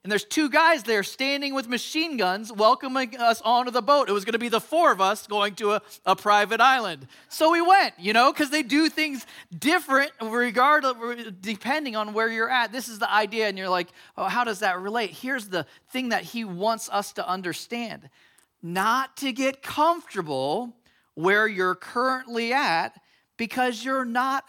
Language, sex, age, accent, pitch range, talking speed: English, male, 40-59, American, 210-275 Hz, 190 wpm